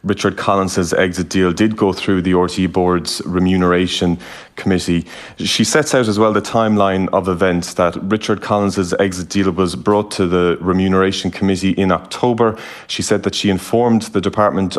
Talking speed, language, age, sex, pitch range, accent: 165 wpm, English, 30-49, male, 90-105 Hz, Irish